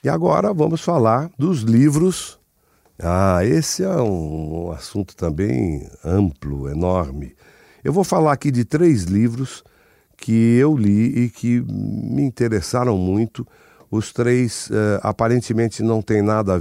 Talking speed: 130 wpm